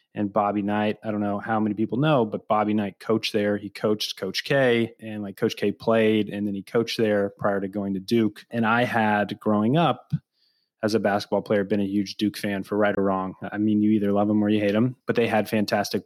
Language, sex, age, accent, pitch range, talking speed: English, male, 20-39, American, 100-110 Hz, 245 wpm